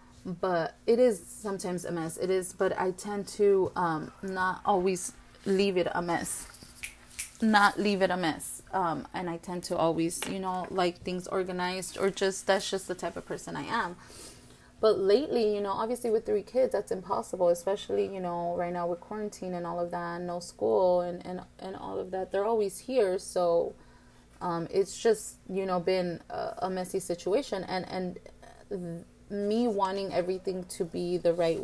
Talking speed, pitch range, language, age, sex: 185 wpm, 170-195 Hz, English, 30-49, female